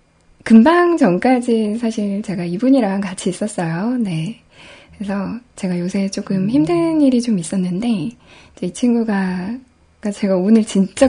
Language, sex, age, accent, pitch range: Korean, female, 10-29, native, 195-245 Hz